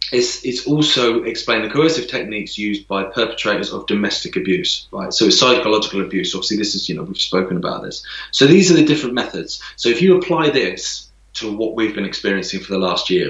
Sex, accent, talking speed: male, British, 210 wpm